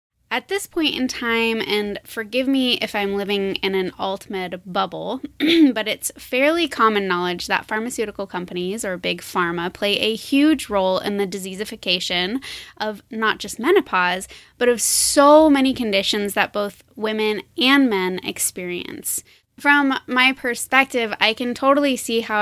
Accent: American